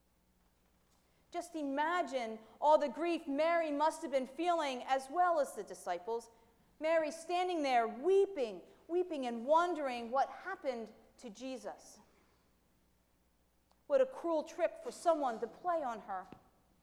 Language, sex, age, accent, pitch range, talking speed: English, female, 40-59, American, 230-320 Hz, 130 wpm